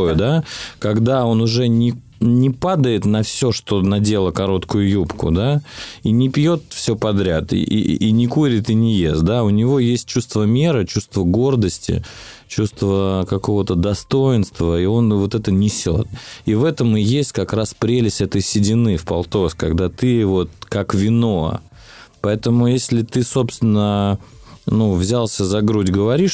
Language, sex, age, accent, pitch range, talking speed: Russian, male, 20-39, native, 90-115 Hz, 160 wpm